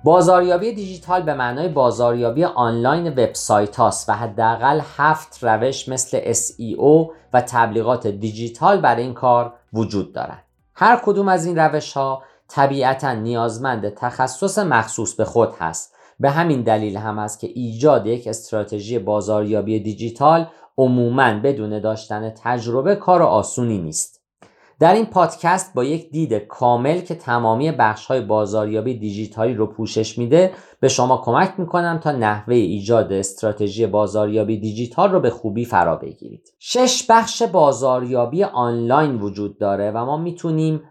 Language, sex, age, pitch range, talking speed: Persian, male, 50-69, 110-155 Hz, 135 wpm